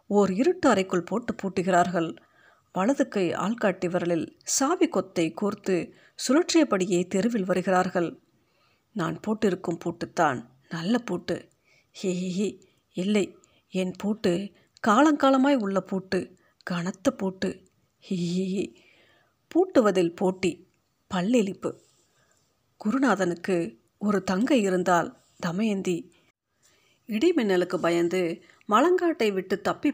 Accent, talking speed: native, 85 wpm